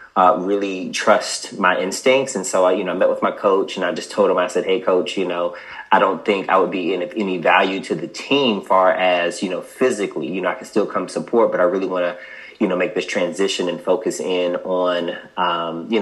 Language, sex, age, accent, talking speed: English, male, 30-49, American, 250 wpm